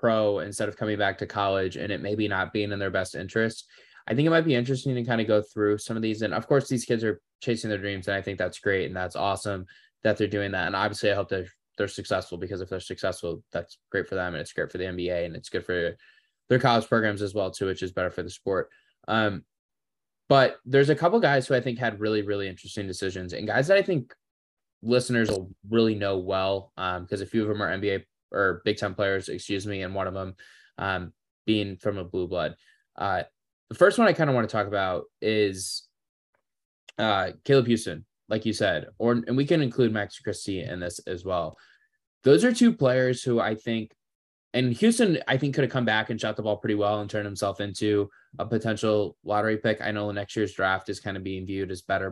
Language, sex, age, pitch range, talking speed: English, male, 10-29, 95-115 Hz, 240 wpm